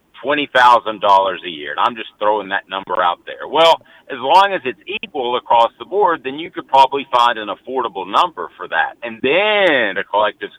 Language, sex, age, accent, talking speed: English, male, 50-69, American, 205 wpm